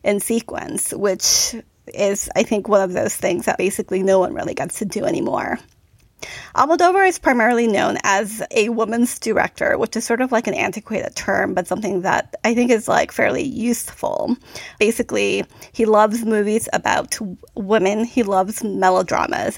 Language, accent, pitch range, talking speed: English, American, 205-235 Hz, 160 wpm